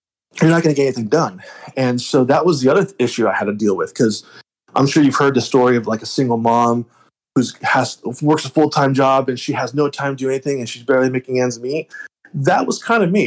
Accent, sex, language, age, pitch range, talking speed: American, male, English, 20-39, 125-160 Hz, 255 wpm